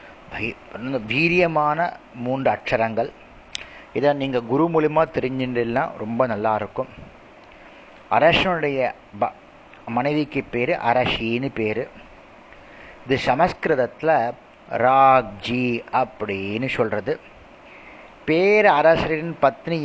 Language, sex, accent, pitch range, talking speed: Tamil, male, native, 115-160 Hz, 70 wpm